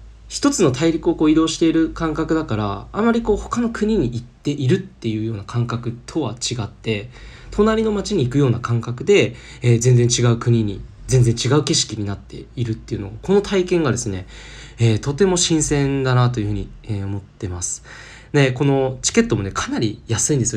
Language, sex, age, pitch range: Japanese, male, 20-39, 105-160 Hz